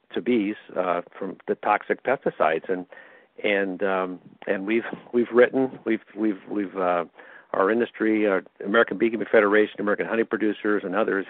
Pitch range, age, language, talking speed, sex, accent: 95-110 Hz, 50-69, English, 155 wpm, male, American